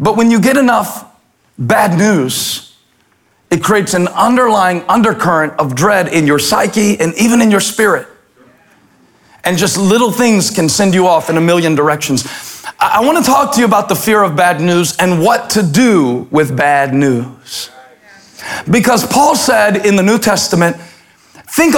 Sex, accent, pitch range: male, American, 170-220 Hz